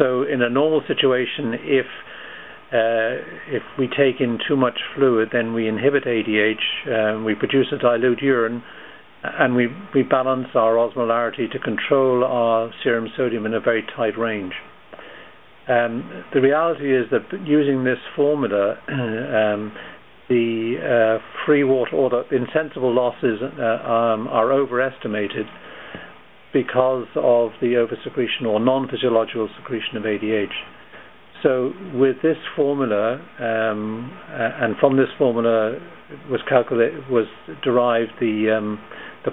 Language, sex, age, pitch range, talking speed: English, male, 50-69, 110-130 Hz, 130 wpm